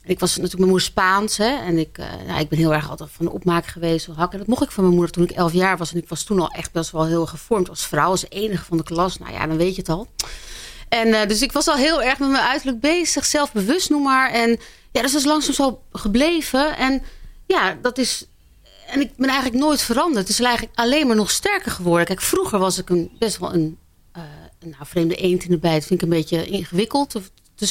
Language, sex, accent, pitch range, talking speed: Dutch, female, Dutch, 175-255 Hz, 270 wpm